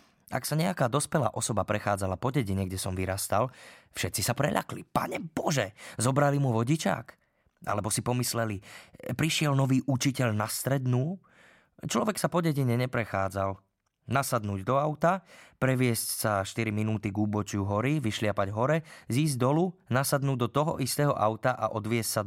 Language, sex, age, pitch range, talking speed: Slovak, male, 20-39, 105-135 Hz, 145 wpm